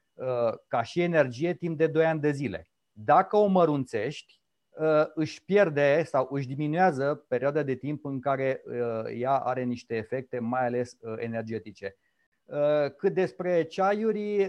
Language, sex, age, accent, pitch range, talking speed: Romanian, male, 30-49, native, 130-160 Hz, 135 wpm